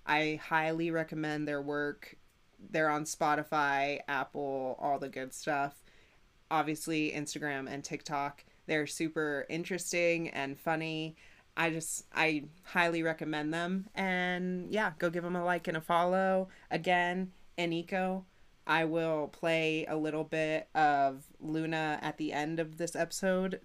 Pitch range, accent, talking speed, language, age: 155-190 Hz, American, 135 wpm, English, 30-49